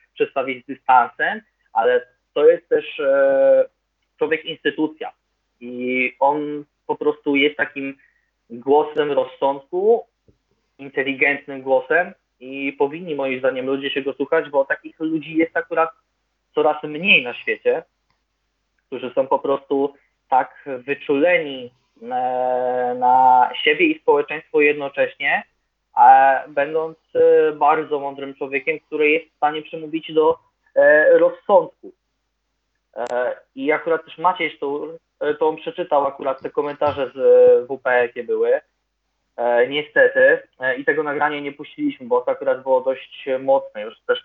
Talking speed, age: 115 wpm, 20-39